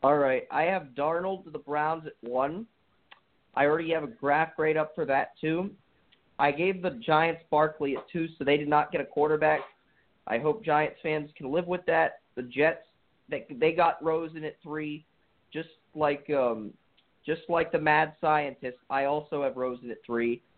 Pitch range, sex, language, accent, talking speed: 145-175 Hz, male, English, American, 185 wpm